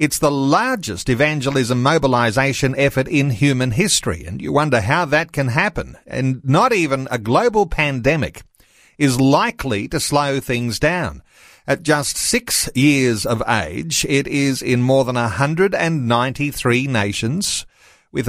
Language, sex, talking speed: English, male, 140 wpm